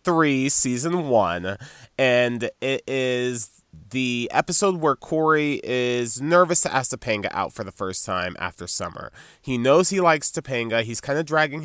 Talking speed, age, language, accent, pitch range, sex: 160 wpm, 20-39, English, American, 110-145 Hz, male